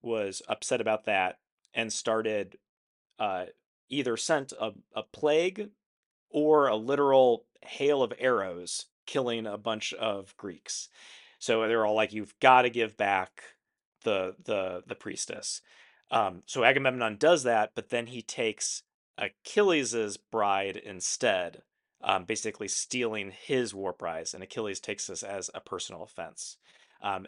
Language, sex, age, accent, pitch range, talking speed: English, male, 30-49, American, 105-125 Hz, 140 wpm